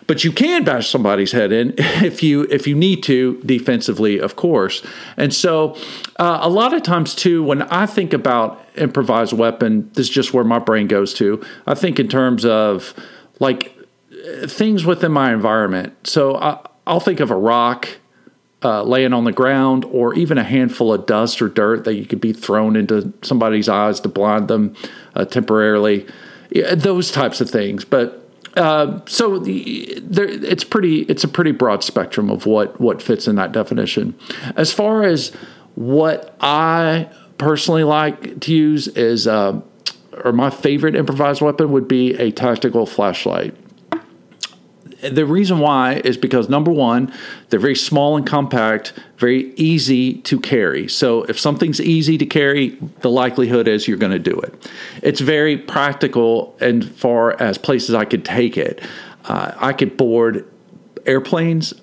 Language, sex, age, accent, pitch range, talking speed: English, male, 50-69, American, 115-155 Hz, 165 wpm